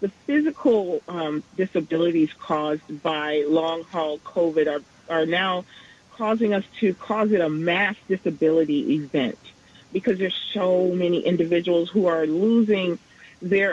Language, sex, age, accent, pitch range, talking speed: English, female, 40-59, American, 165-210 Hz, 125 wpm